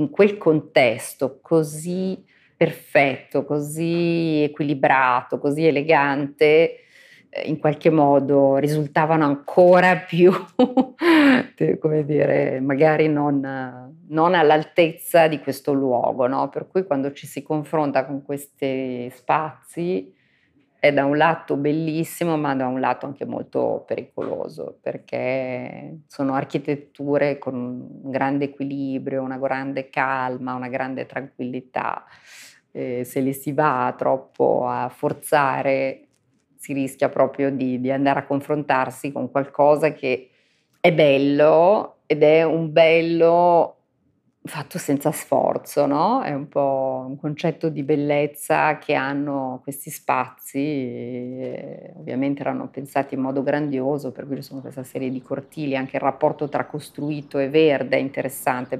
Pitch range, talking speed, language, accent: 135-155 Hz, 125 wpm, Italian, native